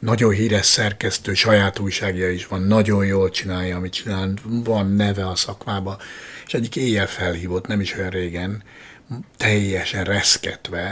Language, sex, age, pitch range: Hungarian, male, 60-79, 95-115 Hz